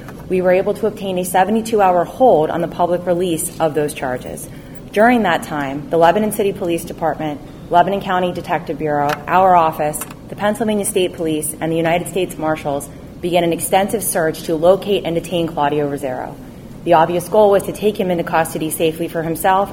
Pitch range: 155-185 Hz